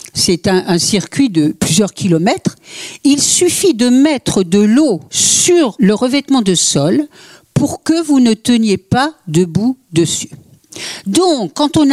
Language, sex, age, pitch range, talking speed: French, female, 60-79, 175-280 Hz, 145 wpm